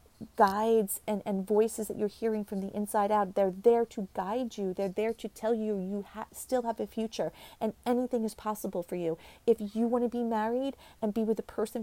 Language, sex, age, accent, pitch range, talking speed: English, female, 40-59, American, 200-240 Hz, 220 wpm